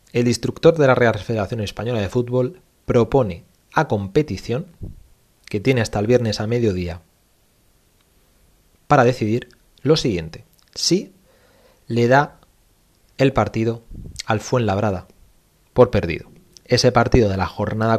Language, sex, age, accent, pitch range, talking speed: Spanish, male, 30-49, Spanish, 95-120 Hz, 125 wpm